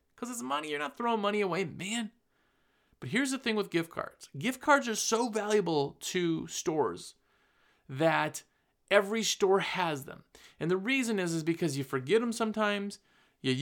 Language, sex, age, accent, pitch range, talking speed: English, male, 30-49, American, 150-205 Hz, 170 wpm